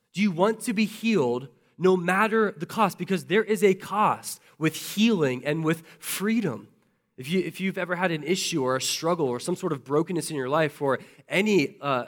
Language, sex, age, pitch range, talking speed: English, male, 20-39, 140-190 Hz, 205 wpm